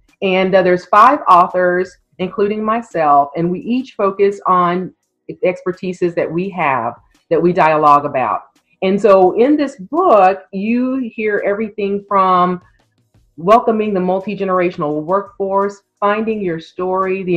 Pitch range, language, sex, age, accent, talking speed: 155-200 Hz, English, female, 40-59, American, 130 wpm